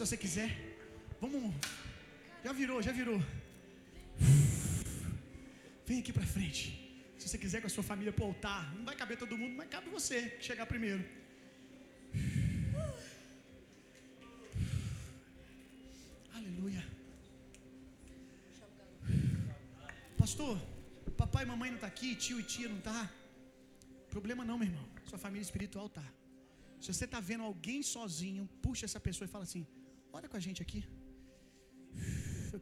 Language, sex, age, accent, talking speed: Gujarati, male, 30-49, Brazilian, 130 wpm